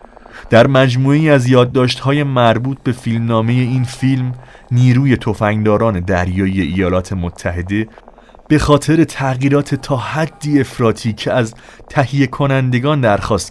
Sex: male